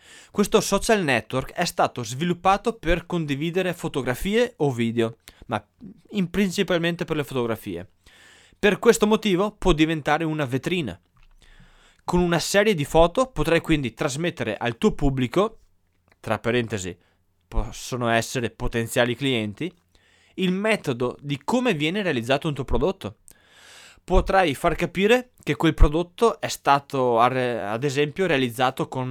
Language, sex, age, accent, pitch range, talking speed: Italian, male, 20-39, native, 125-180 Hz, 125 wpm